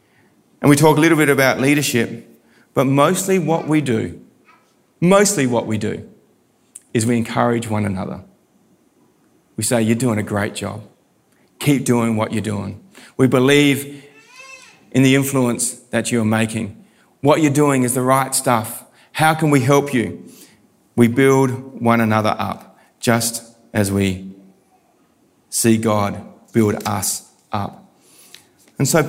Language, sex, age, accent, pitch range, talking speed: English, male, 30-49, Australian, 110-135 Hz, 140 wpm